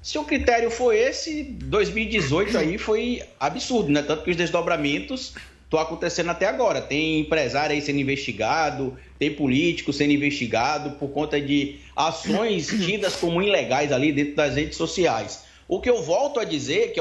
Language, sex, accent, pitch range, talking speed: Portuguese, male, Brazilian, 155-230 Hz, 160 wpm